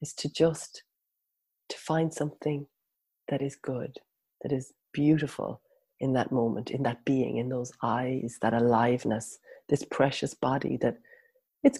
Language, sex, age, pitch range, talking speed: English, female, 30-49, 135-220 Hz, 140 wpm